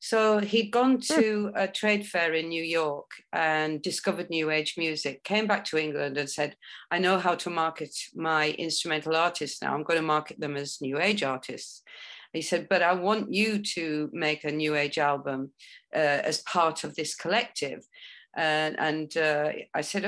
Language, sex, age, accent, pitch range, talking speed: English, female, 50-69, British, 155-205 Hz, 185 wpm